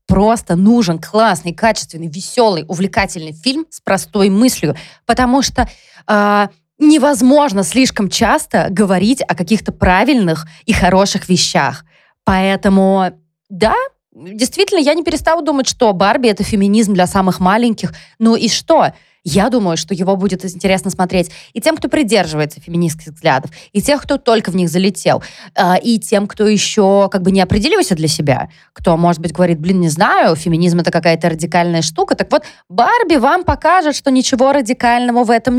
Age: 20-39